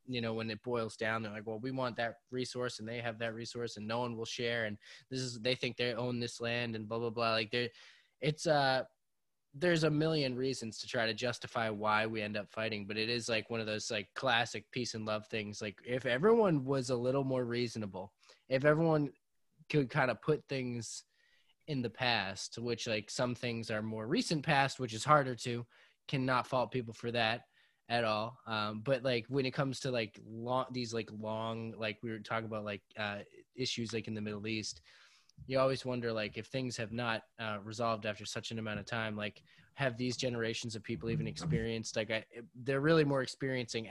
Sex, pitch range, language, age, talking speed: male, 110-130 Hz, English, 20-39, 215 wpm